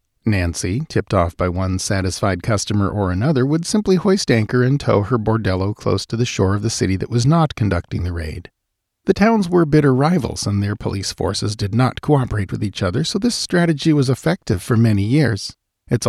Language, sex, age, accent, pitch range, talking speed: English, male, 40-59, American, 100-130 Hz, 200 wpm